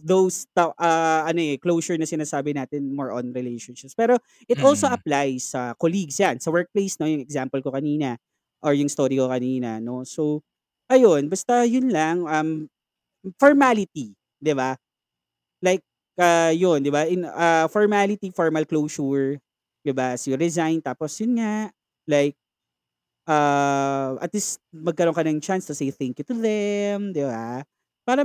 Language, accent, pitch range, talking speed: Filipino, native, 135-175 Hz, 160 wpm